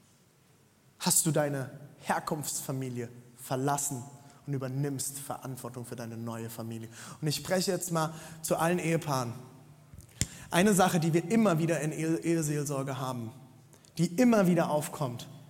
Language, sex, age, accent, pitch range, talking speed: German, male, 20-39, German, 125-150 Hz, 130 wpm